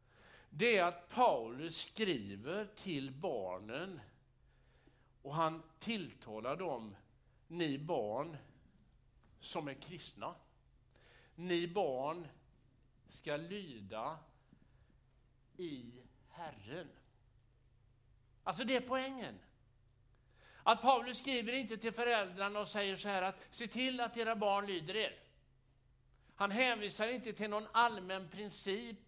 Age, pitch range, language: 60-79, 130-220 Hz, Swedish